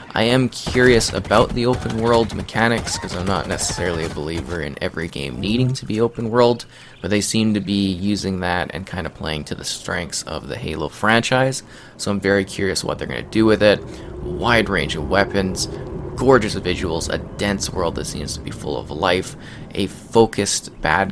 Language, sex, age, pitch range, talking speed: English, male, 20-39, 85-110 Hz, 200 wpm